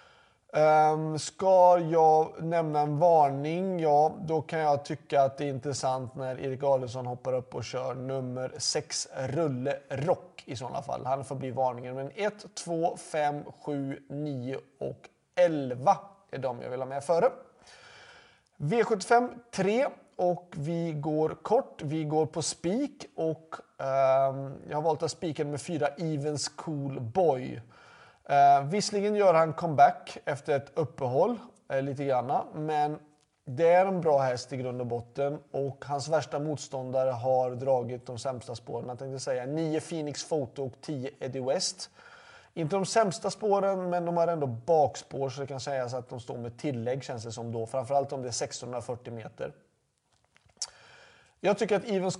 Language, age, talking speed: Swedish, 30-49, 160 wpm